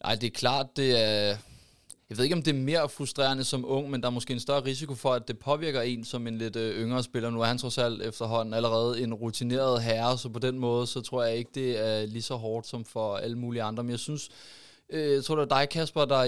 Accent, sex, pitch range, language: native, male, 115-135 Hz, Danish